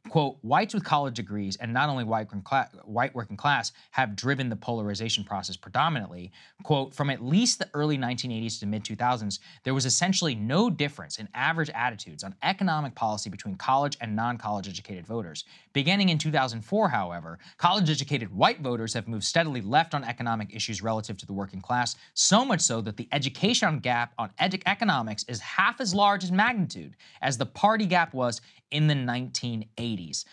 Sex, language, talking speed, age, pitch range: male, English, 170 wpm, 20-39, 110-155 Hz